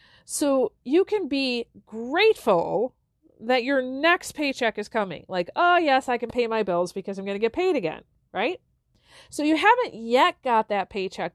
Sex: female